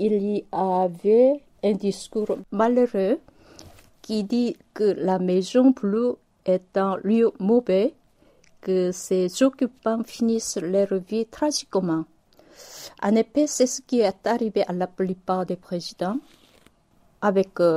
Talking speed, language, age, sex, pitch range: 120 wpm, French, 50-69, female, 185-230 Hz